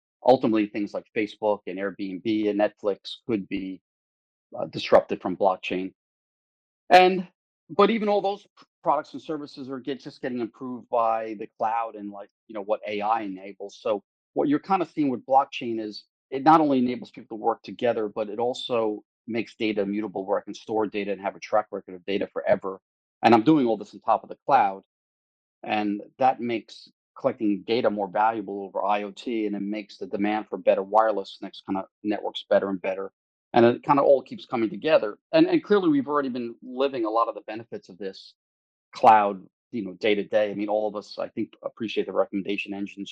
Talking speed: 200 wpm